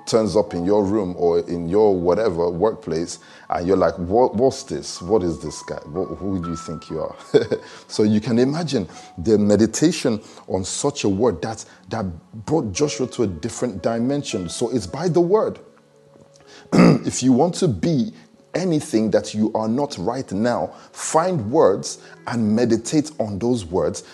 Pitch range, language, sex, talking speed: 105-135 Hz, English, male, 165 wpm